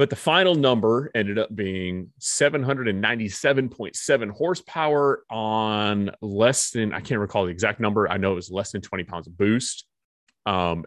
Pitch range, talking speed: 95-125 Hz, 160 wpm